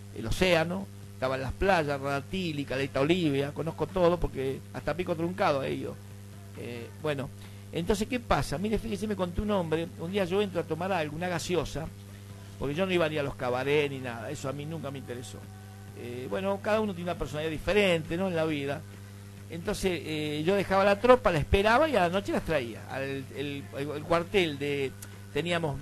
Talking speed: 200 wpm